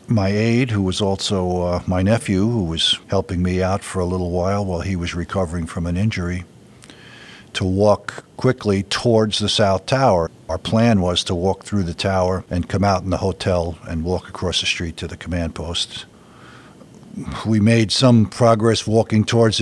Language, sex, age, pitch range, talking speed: English, male, 50-69, 90-110 Hz, 185 wpm